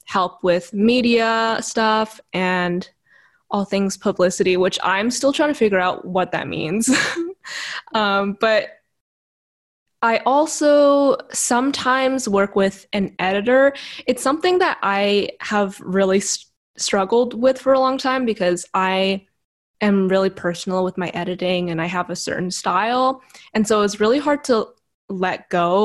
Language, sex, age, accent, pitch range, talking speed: English, female, 10-29, American, 180-230 Hz, 140 wpm